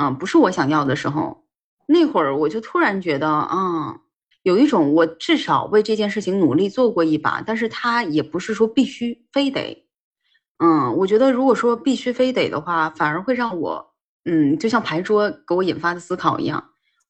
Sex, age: female, 20-39